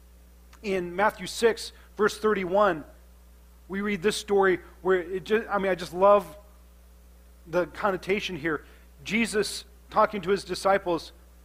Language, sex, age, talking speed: English, male, 40-59, 130 wpm